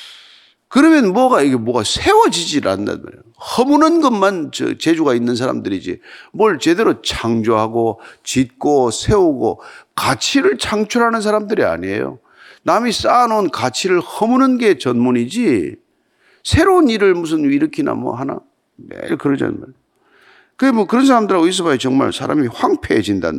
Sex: male